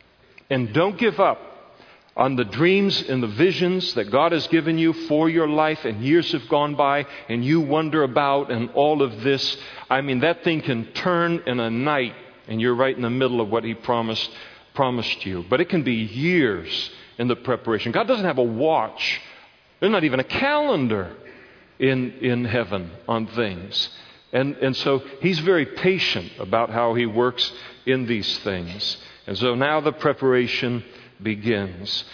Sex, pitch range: male, 115-145 Hz